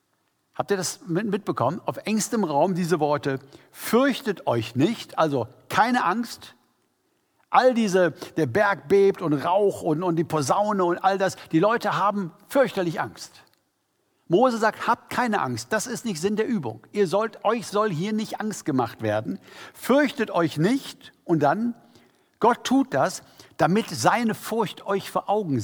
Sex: male